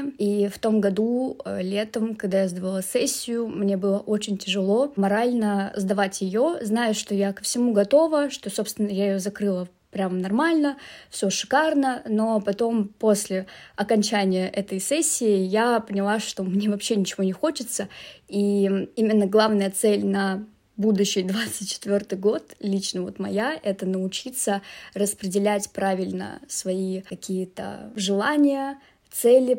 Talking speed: 130 wpm